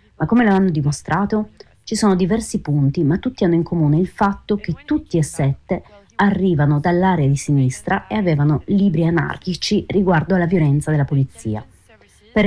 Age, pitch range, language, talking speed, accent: 30-49, 140-185 Hz, Italian, 160 wpm, native